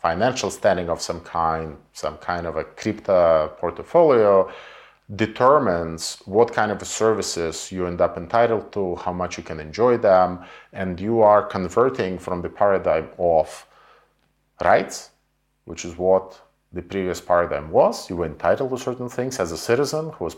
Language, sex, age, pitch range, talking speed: English, male, 40-59, 85-115 Hz, 160 wpm